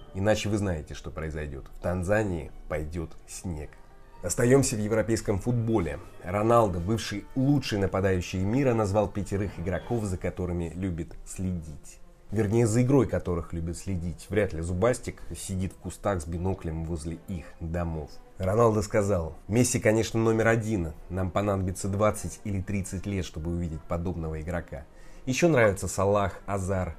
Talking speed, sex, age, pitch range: 140 wpm, male, 20-39, 85-110 Hz